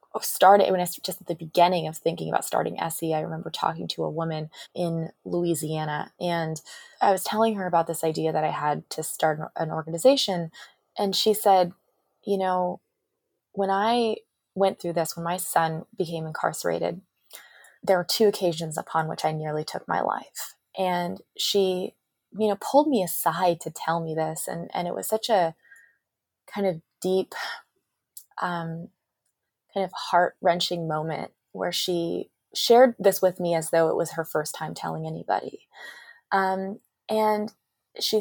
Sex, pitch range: female, 170-205 Hz